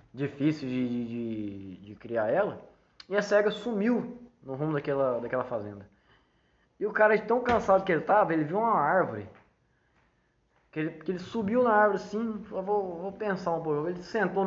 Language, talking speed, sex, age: Portuguese, 180 wpm, male, 20-39